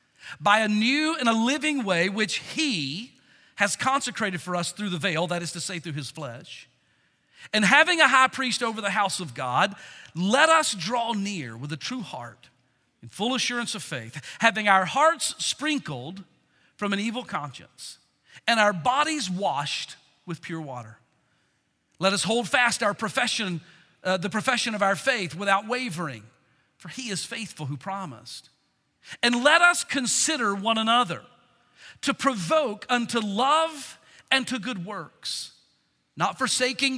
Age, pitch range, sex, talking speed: 40-59, 170-255 Hz, male, 155 wpm